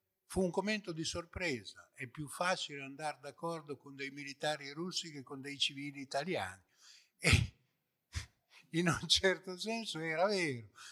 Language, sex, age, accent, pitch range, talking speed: Italian, male, 60-79, native, 140-185 Hz, 145 wpm